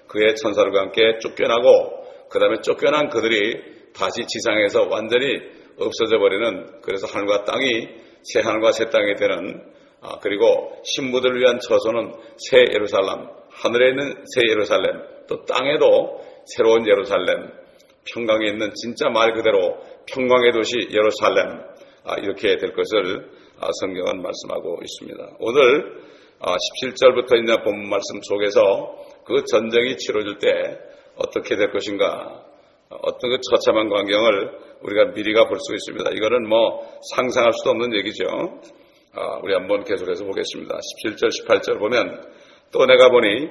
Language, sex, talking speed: English, male, 125 wpm